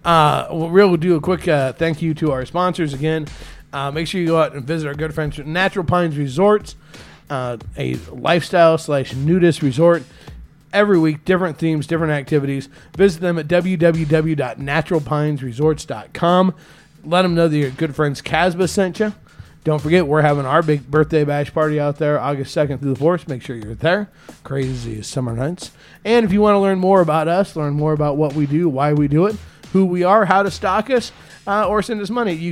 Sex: male